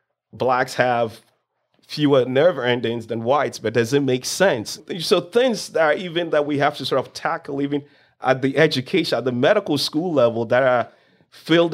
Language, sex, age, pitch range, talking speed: English, male, 30-49, 115-150 Hz, 185 wpm